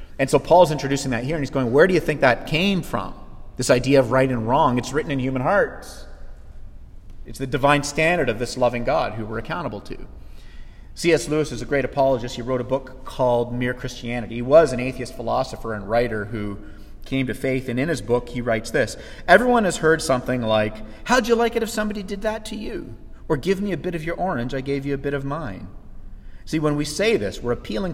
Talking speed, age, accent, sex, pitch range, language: 230 wpm, 30-49, American, male, 120-155 Hz, English